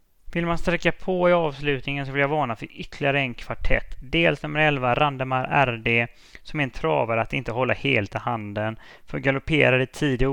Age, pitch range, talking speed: 20-39, 120-150 Hz, 210 wpm